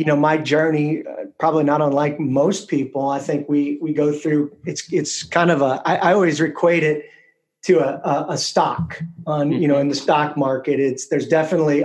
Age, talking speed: 30-49, 210 wpm